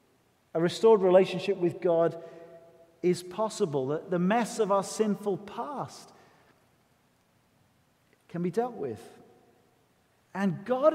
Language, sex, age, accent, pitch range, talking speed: English, male, 40-59, British, 145-185 Hz, 110 wpm